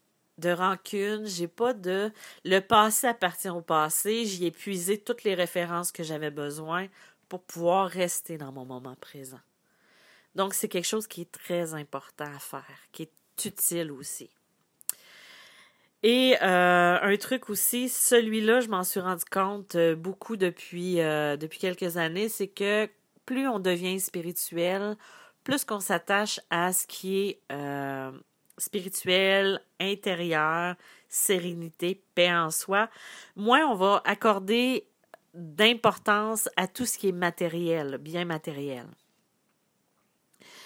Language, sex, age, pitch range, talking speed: French, female, 40-59, 165-210 Hz, 135 wpm